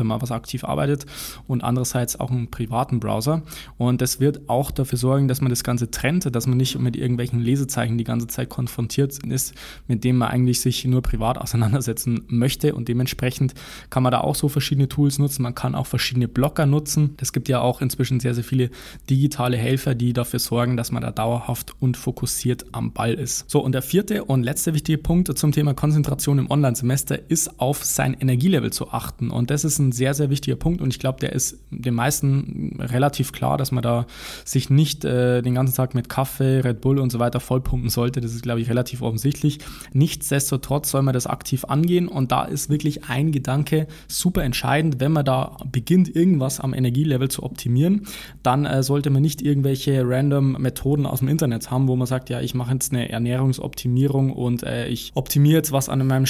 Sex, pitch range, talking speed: male, 125-145 Hz, 205 wpm